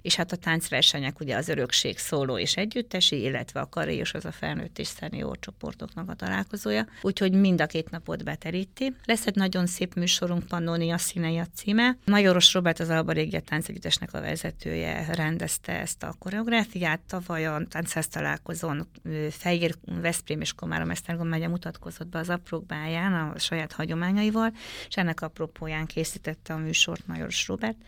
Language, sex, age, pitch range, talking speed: Hungarian, female, 30-49, 160-185 Hz, 155 wpm